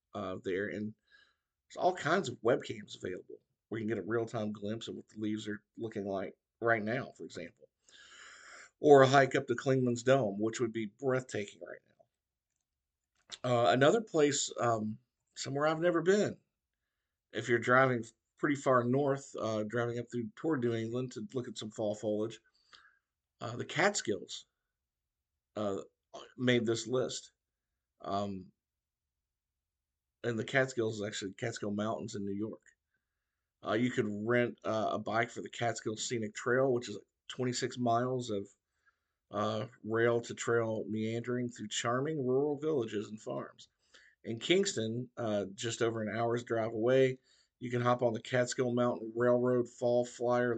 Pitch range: 105-125 Hz